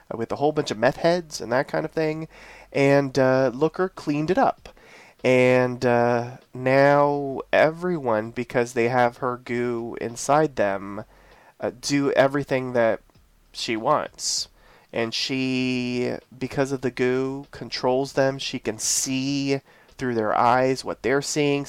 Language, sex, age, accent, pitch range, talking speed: English, male, 30-49, American, 115-140 Hz, 145 wpm